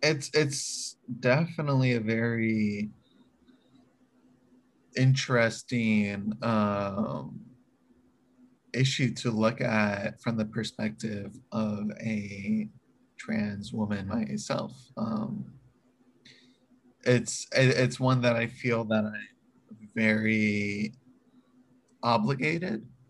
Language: English